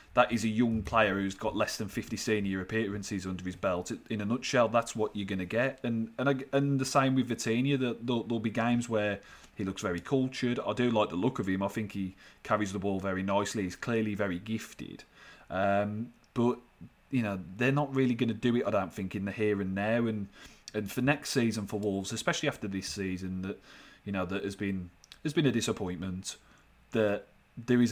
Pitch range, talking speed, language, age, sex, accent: 100-115 Hz, 220 wpm, English, 30-49, male, British